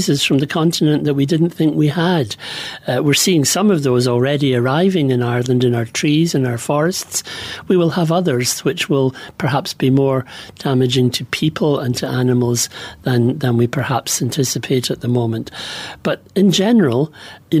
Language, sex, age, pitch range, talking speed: English, male, 60-79, 130-160 Hz, 175 wpm